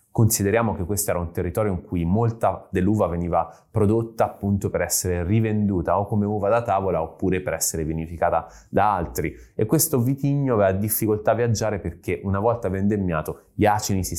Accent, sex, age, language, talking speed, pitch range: native, male, 30-49, Italian, 175 wpm, 90-120 Hz